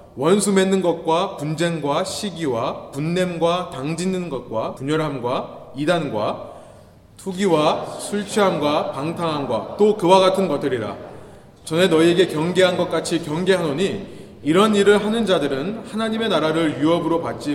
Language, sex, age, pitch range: Korean, male, 20-39, 140-190 Hz